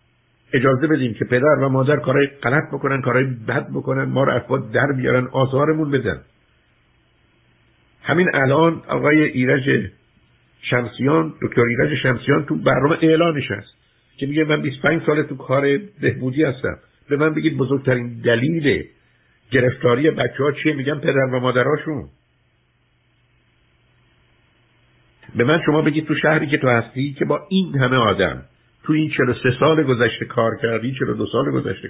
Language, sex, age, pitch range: Persian, male, 60-79, 125-155 Hz